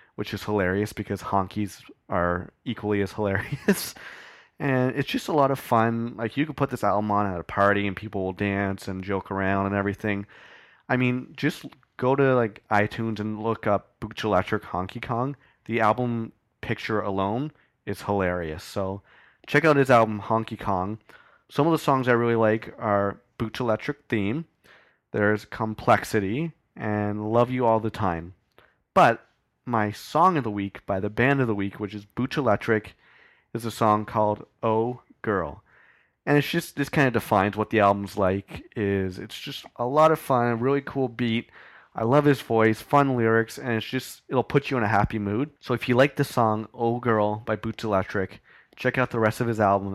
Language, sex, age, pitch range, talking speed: English, male, 30-49, 100-125 Hz, 190 wpm